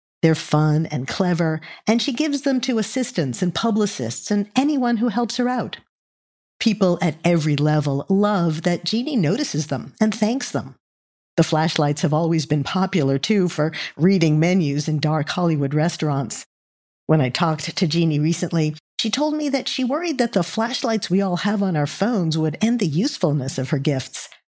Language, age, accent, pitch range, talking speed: English, 50-69, American, 155-205 Hz, 175 wpm